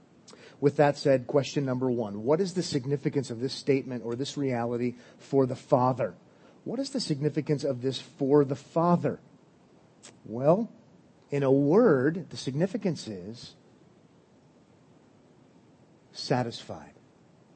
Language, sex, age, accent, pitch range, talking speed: English, male, 40-59, American, 135-170 Hz, 125 wpm